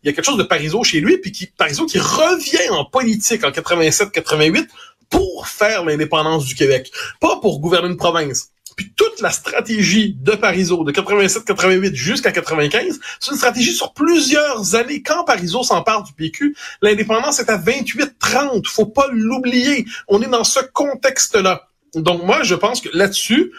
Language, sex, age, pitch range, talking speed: French, male, 30-49, 160-230 Hz, 170 wpm